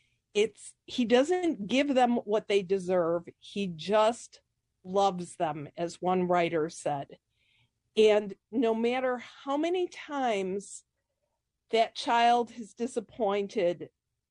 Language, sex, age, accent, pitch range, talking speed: English, female, 50-69, American, 180-245 Hz, 110 wpm